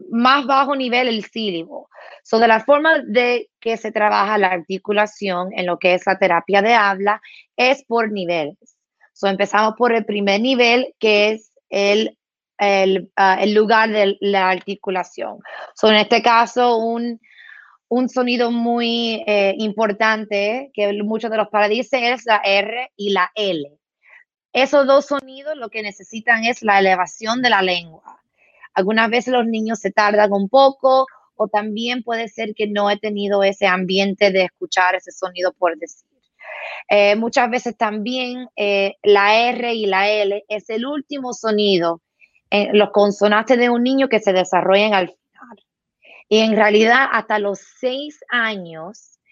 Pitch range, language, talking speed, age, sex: 195-235 Hz, Spanish, 160 wpm, 20-39, female